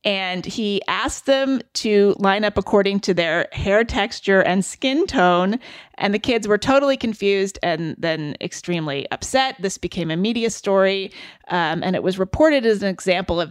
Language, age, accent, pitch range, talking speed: English, 30-49, American, 185-230 Hz, 175 wpm